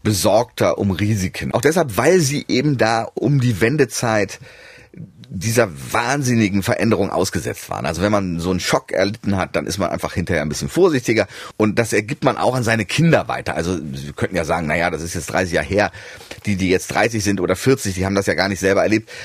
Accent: German